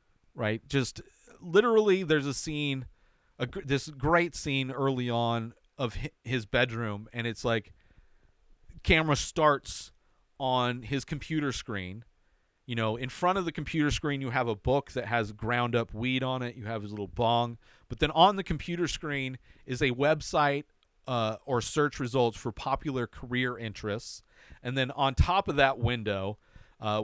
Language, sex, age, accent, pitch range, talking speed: English, male, 40-59, American, 110-150 Hz, 160 wpm